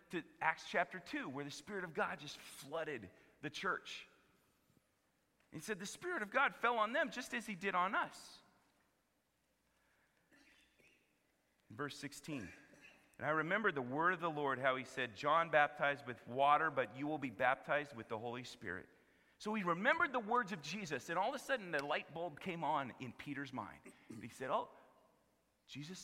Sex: male